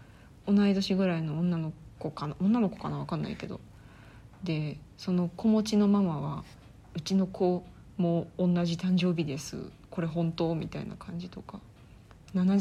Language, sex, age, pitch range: Japanese, female, 20-39, 135-200 Hz